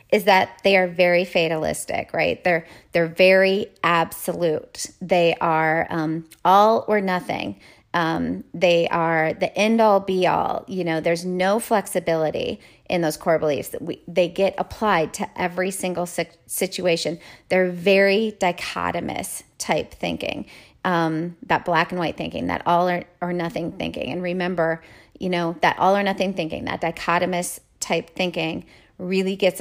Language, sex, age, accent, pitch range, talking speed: English, female, 30-49, American, 170-195 Hz, 150 wpm